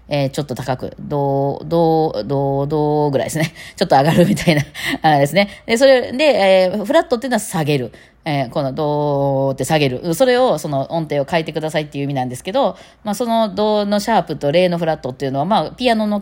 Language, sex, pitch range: Japanese, female, 135-205 Hz